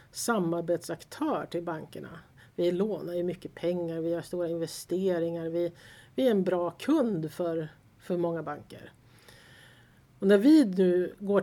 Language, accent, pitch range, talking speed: Swedish, native, 160-195 Hz, 140 wpm